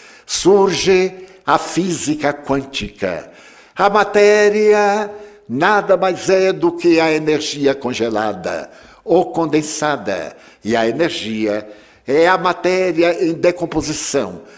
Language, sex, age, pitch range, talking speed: Portuguese, male, 60-79, 120-190 Hz, 100 wpm